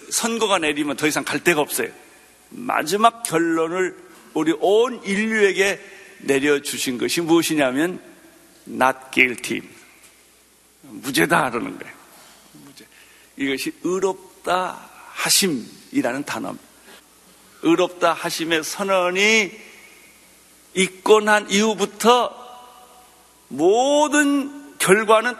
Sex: male